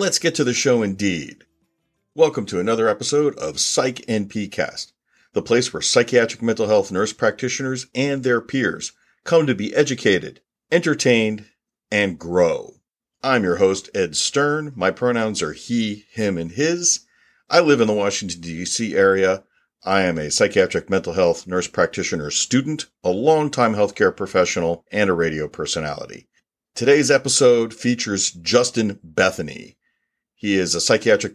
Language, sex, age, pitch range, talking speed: English, male, 50-69, 95-130 Hz, 145 wpm